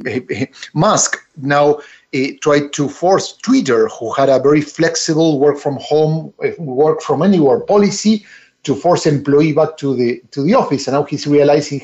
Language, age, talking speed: English, 50-69, 165 wpm